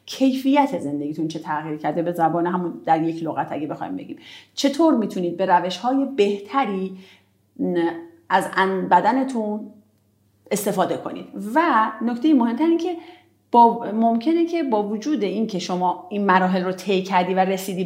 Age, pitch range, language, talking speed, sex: 30-49, 185-260 Hz, Persian, 155 wpm, female